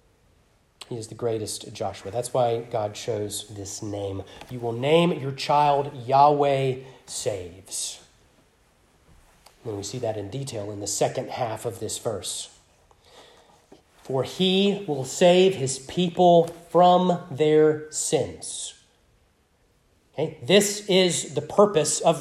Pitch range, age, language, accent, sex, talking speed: 135-185 Hz, 30-49, English, American, male, 120 wpm